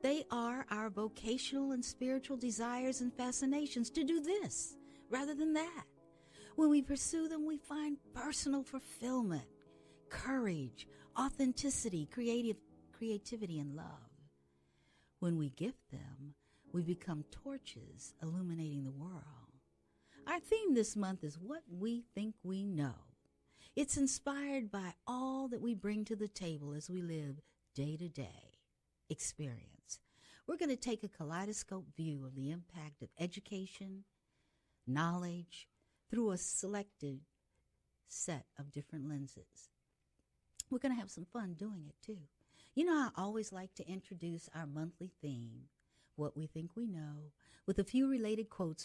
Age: 50-69